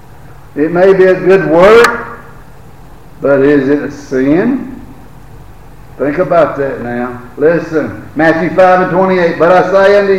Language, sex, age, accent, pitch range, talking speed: English, male, 60-79, American, 145-205 Hz, 140 wpm